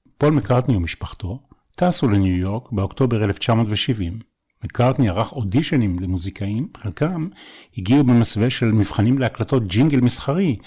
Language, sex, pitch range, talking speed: Hebrew, male, 100-140 Hz, 110 wpm